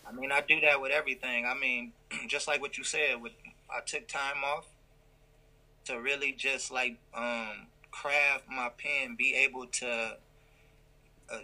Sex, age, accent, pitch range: male, 20-39, American, 125-150 Hz